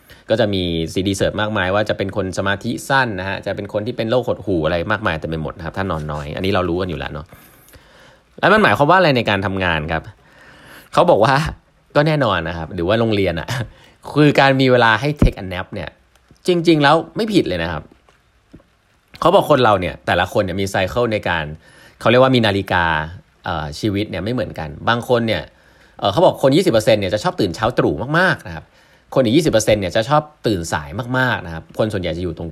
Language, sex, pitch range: Thai, male, 85-125 Hz